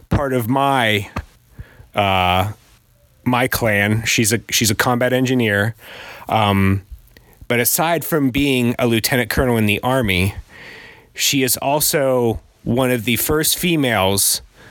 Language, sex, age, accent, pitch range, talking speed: English, male, 30-49, American, 105-135 Hz, 125 wpm